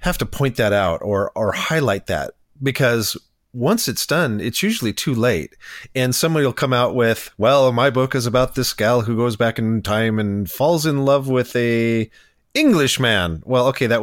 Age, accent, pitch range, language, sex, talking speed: 40-59, American, 105-140 Hz, English, male, 195 wpm